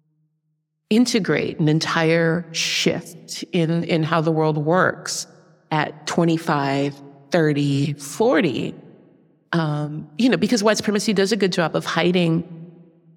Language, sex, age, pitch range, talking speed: English, female, 30-49, 165-195 Hz, 120 wpm